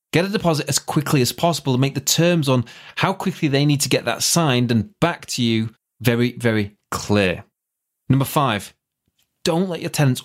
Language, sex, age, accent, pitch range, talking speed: English, male, 30-49, British, 115-150 Hz, 195 wpm